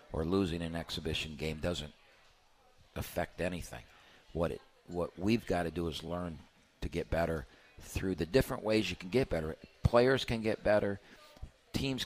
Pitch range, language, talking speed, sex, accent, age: 80-95 Hz, English, 165 wpm, male, American, 50-69